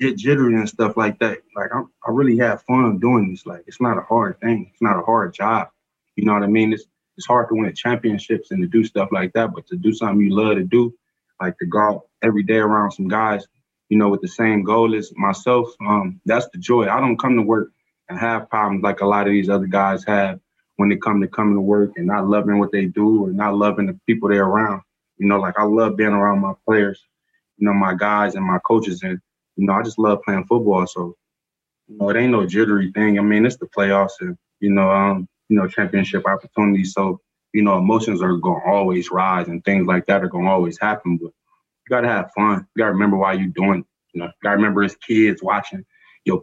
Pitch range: 100-110 Hz